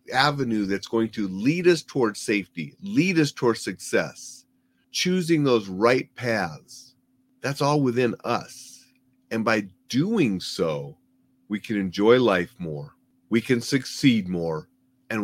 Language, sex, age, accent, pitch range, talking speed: English, male, 40-59, American, 100-135 Hz, 135 wpm